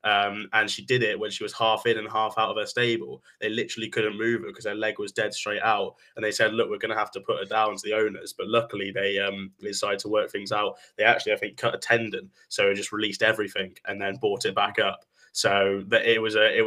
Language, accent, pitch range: English, British, 105-130 Hz